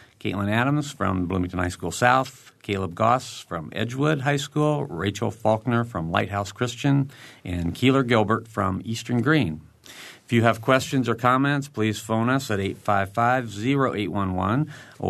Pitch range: 90-120 Hz